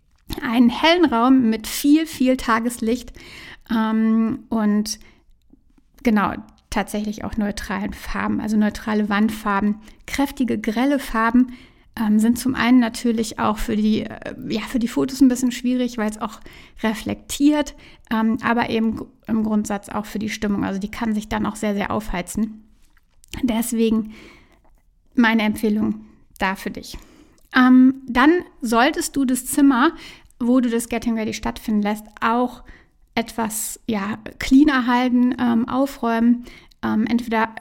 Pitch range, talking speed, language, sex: 220-250 Hz, 125 wpm, German, female